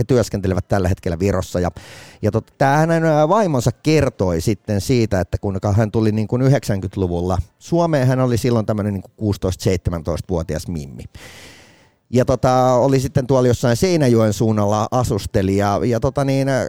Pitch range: 100-130 Hz